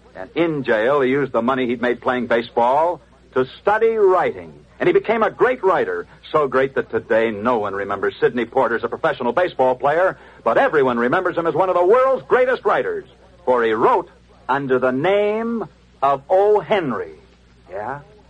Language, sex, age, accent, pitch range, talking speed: English, male, 60-79, American, 145-230 Hz, 180 wpm